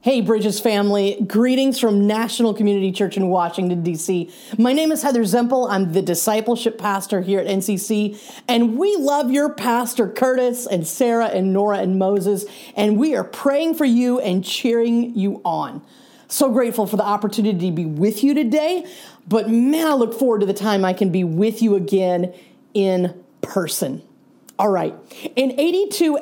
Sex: female